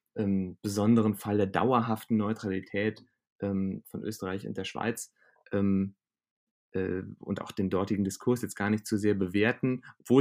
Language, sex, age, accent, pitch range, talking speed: German, male, 30-49, German, 95-120 Hz, 145 wpm